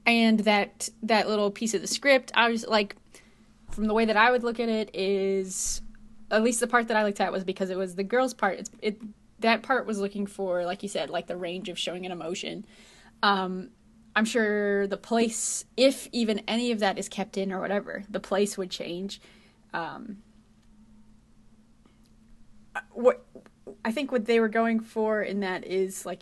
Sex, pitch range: female, 190-225 Hz